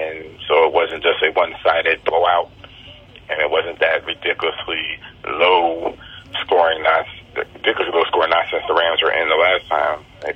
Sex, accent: male, American